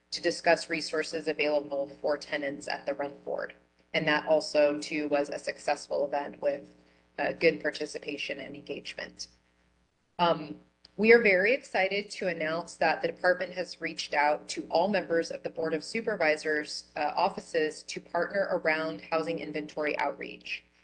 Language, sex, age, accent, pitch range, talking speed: English, female, 30-49, American, 145-170 Hz, 155 wpm